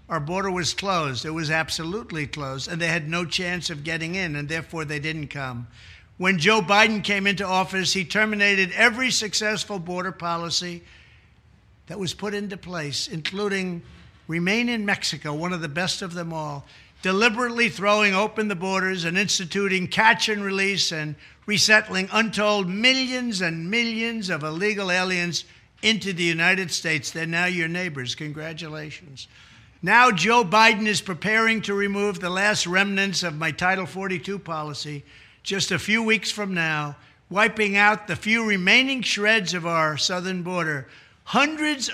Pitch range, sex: 165-210 Hz, male